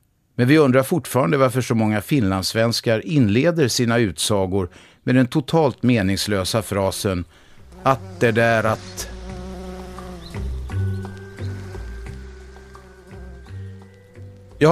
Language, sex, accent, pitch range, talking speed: Swedish, male, native, 100-135 Hz, 85 wpm